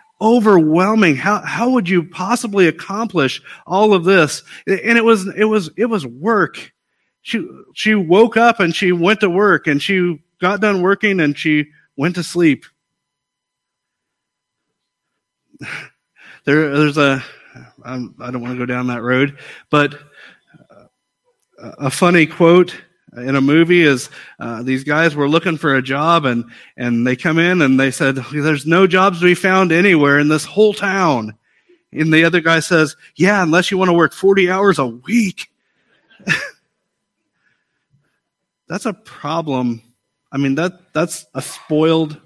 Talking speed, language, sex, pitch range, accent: 155 wpm, English, male, 140-195 Hz, American